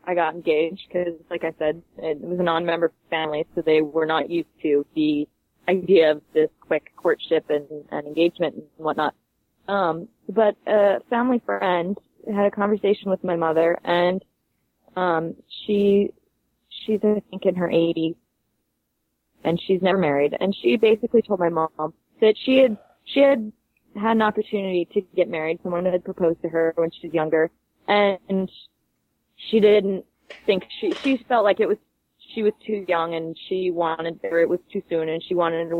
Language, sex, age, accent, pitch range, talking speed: English, female, 20-39, American, 165-210 Hz, 180 wpm